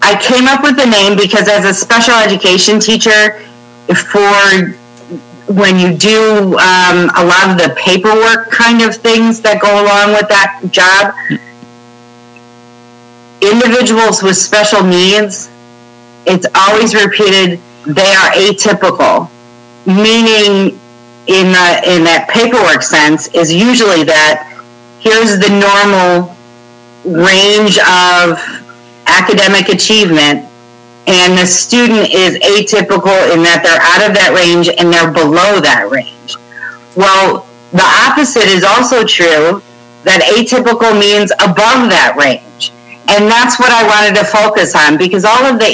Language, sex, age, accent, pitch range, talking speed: English, female, 40-59, American, 170-215 Hz, 130 wpm